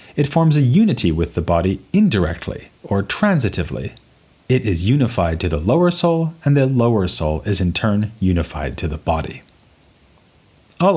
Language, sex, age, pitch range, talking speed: English, male, 30-49, 85-125 Hz, 160 wpm